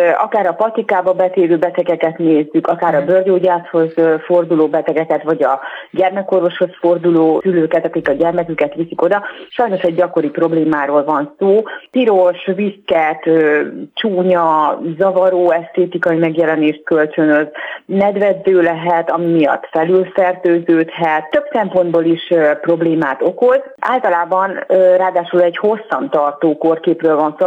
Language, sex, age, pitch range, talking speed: Hungarian, female, 30-49, 160-195 Hz, 115 wpm